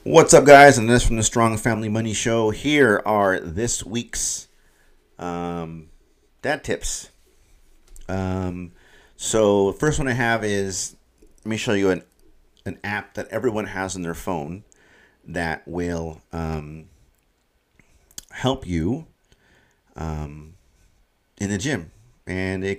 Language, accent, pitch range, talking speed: English, American, 85-110 Hz, 130 wpm